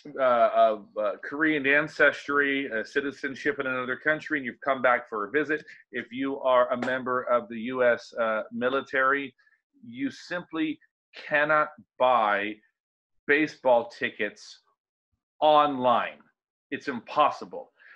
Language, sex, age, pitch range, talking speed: English, male, 40-59, 120-165 Hz, 115 wpm